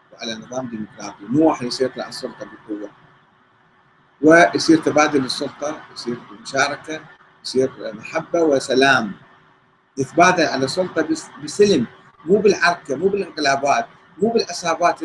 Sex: male